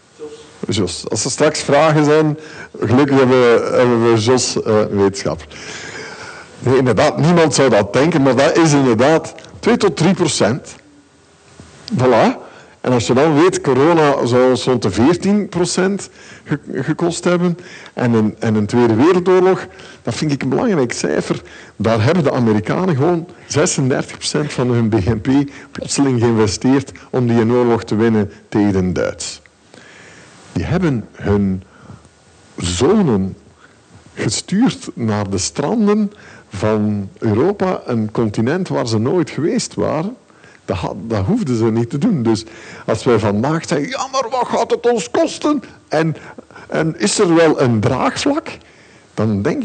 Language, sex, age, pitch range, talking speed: Dutch, male, 50-69, 110-170 Hz, 145 wpm